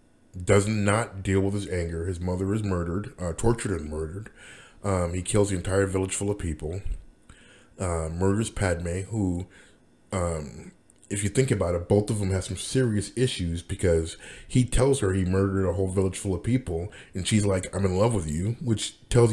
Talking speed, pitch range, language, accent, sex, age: 195 wpm, 90-110 Hz, English, American, male, 30-49